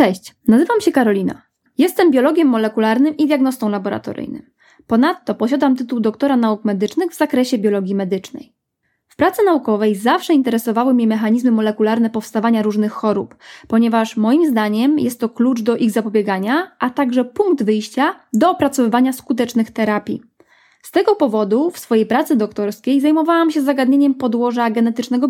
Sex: female